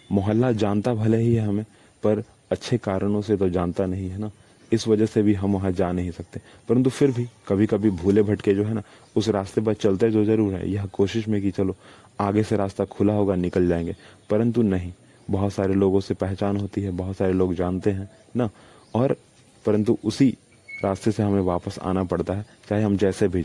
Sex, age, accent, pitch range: male, 30-49, native, 100-115 Hz